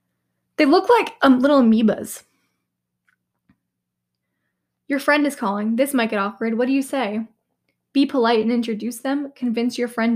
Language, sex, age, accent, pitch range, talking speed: English, female, 10-29, American, 190-245 Hz, 155 wpm